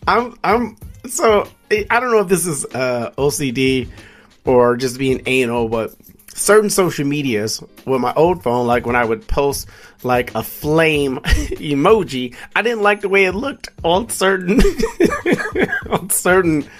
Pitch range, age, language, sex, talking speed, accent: 125-170 Hz, 30-49, English, male, 155 wpm, American